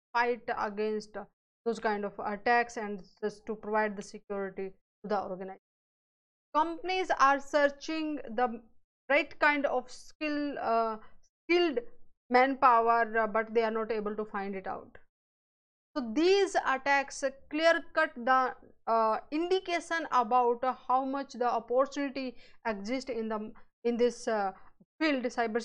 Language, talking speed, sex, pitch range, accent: English, 130 wpm, female, 215-265 Hz, Indian